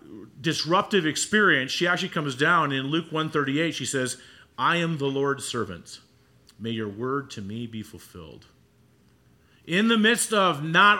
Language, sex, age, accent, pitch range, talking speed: English, male, 40-59, American, 125-170 Hz, 155 wpm